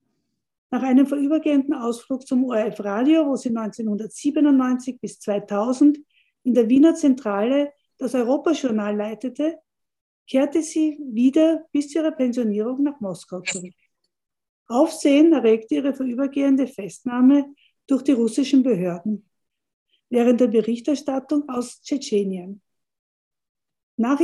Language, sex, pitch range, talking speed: German, female, 220-290 Hz, 105 wpm